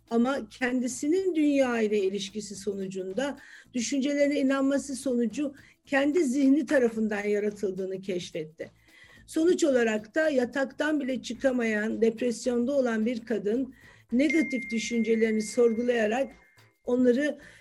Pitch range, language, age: 220-270 Hz, Turkish, 50-69